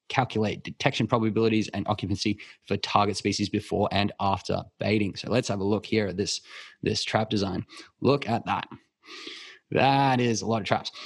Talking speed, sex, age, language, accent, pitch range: 175 wpm, male, 20-39, English, Australian, 100-115 Hz